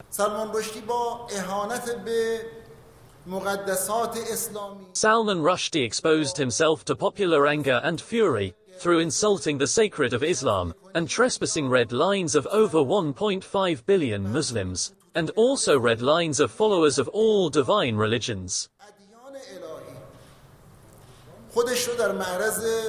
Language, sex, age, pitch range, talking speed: Urdu, male, 40-59, 140-195 Hz, 115 wpm